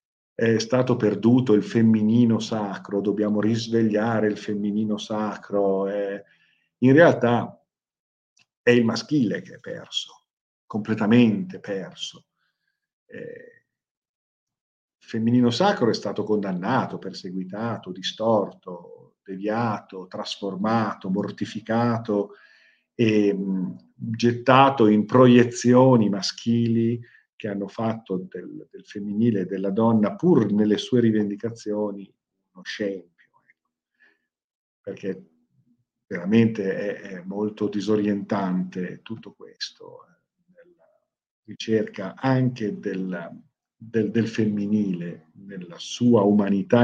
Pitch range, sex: 100-120 Hz, male